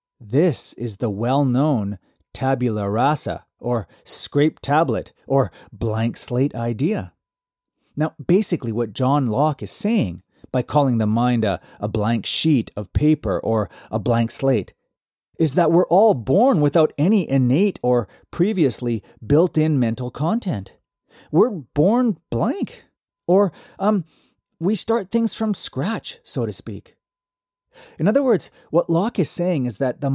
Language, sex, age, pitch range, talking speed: English, male, 30-49, 115-185 Hz, 140 wpm